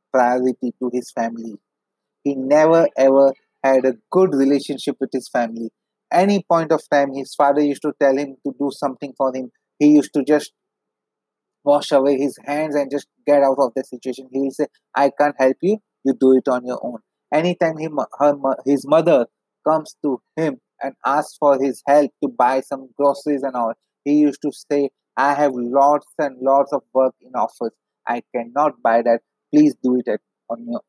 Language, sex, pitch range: English, male, 130-150 Hz